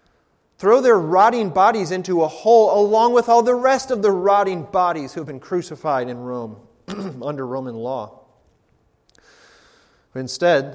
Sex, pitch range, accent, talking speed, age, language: male, 130-165 Hz, American, 145 wpm, 30-49, English